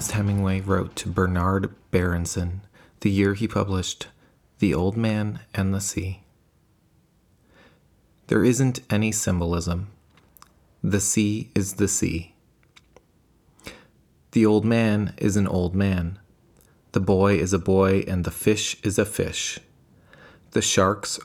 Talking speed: 125 wpm